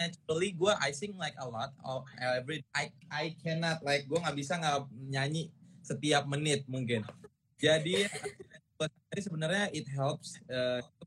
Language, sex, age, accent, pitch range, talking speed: Indonesian, male, 20-39, native, 125-175 Hz, 140 wpm